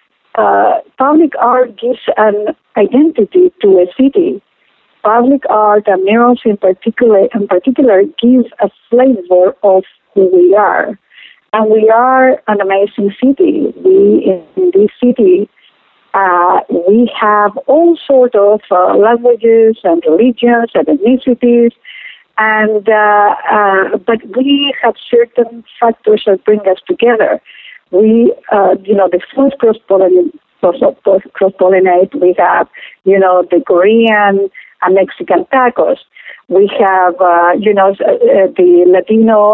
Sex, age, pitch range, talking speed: female, 50-69, 195-255 Hz, 125 wpm